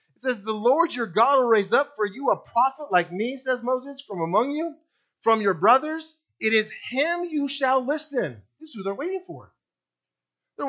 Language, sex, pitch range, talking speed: English, male, 175-270 Hz, 195 wpm